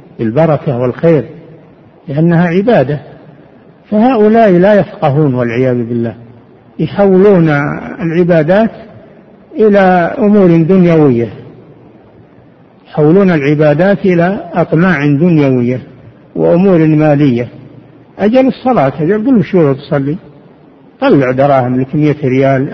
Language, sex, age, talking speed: Arabic, male, 60-79, 80 wpm